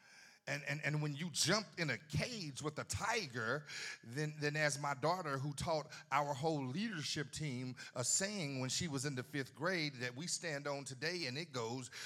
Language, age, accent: English, 40-59, American